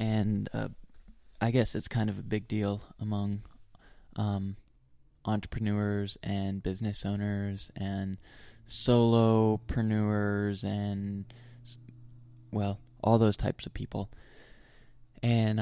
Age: 20-39